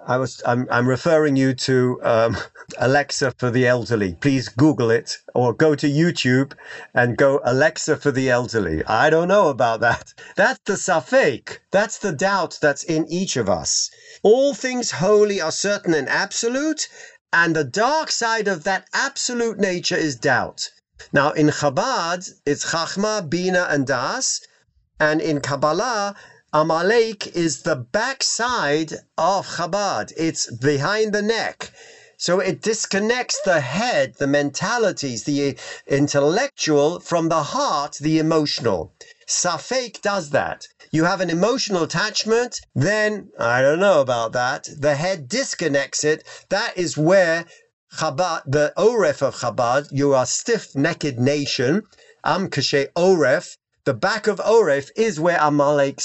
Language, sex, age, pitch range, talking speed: English, male, 50-69, 145-205 Hz, 140 wpm